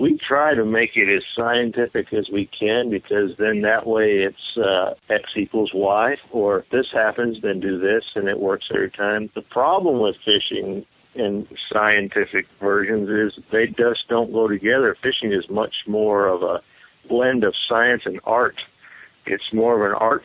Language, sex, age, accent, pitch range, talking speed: English, male, 50-69, American, 105-125 Hz, 180 wpm